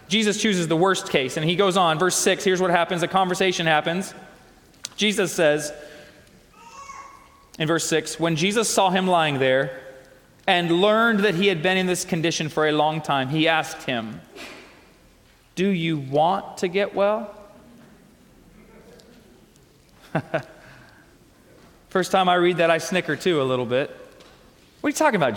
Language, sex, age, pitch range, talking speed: English, male, 30-49, 170-220 Hz, 155 wpm